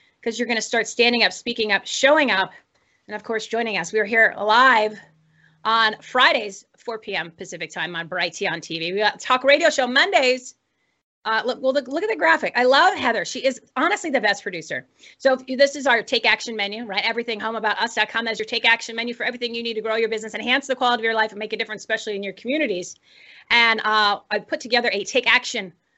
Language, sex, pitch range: English, female, 205-250 Hz